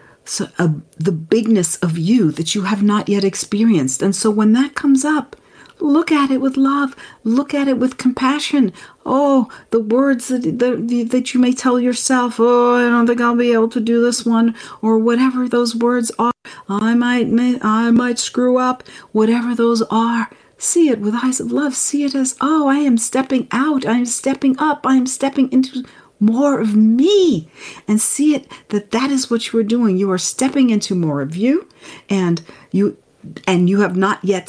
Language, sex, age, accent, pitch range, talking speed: English, female, 50-69, American, 200-255 Hz, 195 wpm